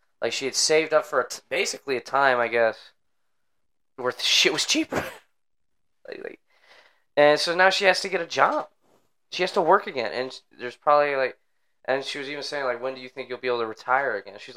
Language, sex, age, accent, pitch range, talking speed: English, male, 20-39, American, 110-130 Hz, 225 wpm